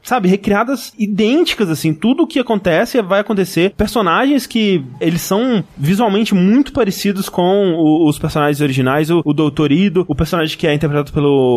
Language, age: Portuguese, 20-39